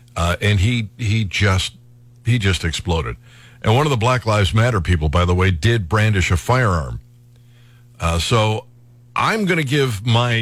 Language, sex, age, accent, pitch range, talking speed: English, male, 50-69, American, 105-120 Hz, 165 wpm